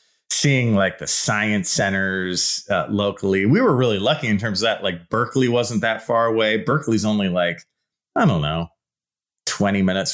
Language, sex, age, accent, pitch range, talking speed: English, male, 30-49, American, 100-130 Hz, 170 wpm